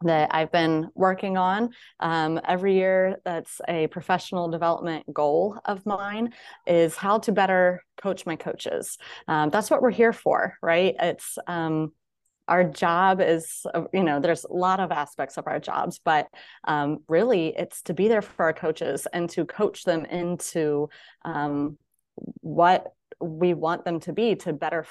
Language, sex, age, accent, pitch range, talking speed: English, female, 20-39, American, 165-195 Hz, 165 wpm